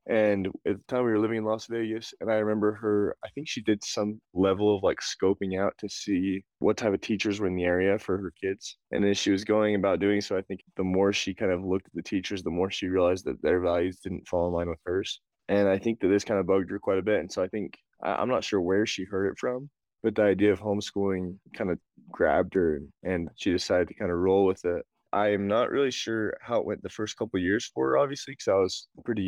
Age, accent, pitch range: 20-39, American, 95-105 Hz